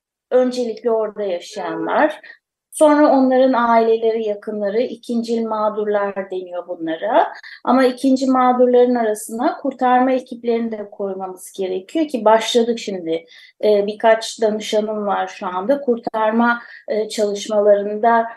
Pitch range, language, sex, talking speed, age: 215-255 Hz, Turkish, female, 100 wpm, 30-49